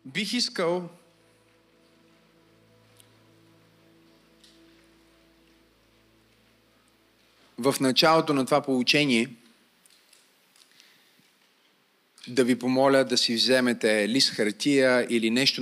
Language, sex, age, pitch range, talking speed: Bulgarian, male, 30-49, 105-130 Hz, 65 wpm